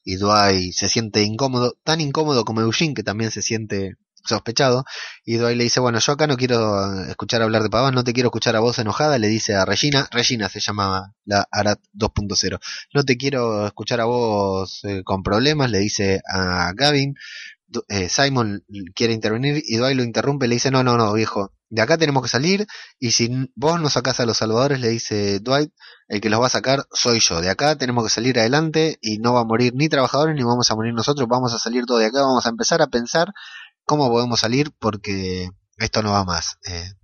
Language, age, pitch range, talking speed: Spanish, 20-39, 105-135 Hz, 215 wpm